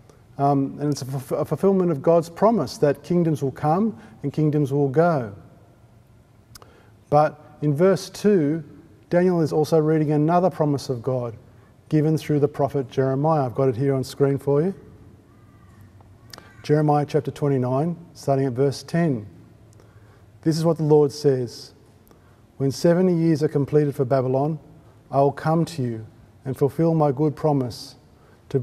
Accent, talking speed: Australian, 155 wpm